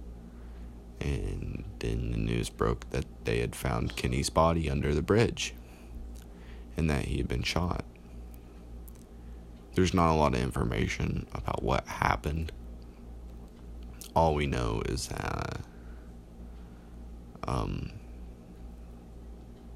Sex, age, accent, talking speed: male, 30-49, American, 105 wpm